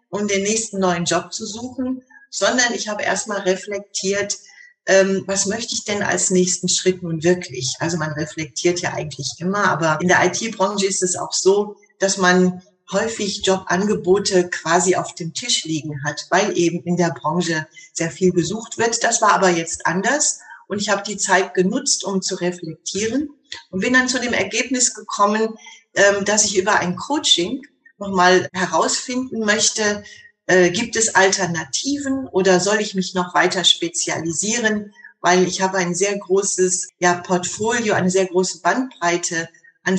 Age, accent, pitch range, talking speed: 40-59, German, 180-210 Hz, 160 wpm